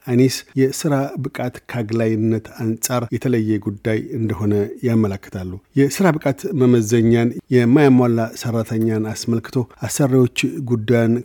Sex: male